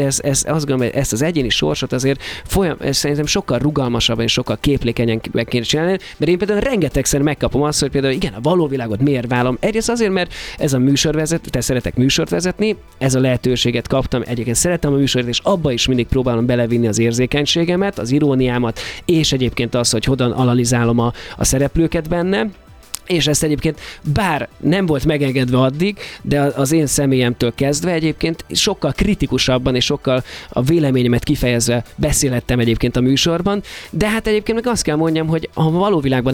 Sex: male